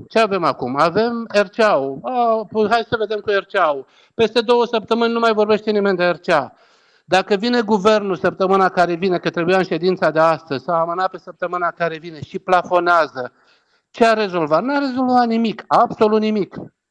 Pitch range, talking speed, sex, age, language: 180-230 Hz, 165 wpm, male, 60-79, Romanian